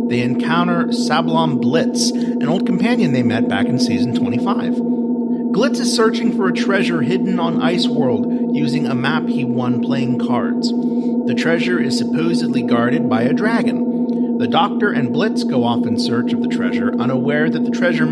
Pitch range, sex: 240-245 Hz, male